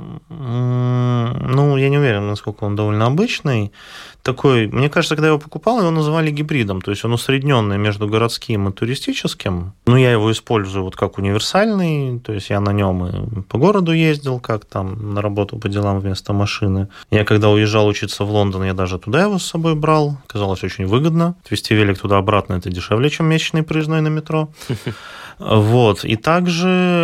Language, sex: Russian, male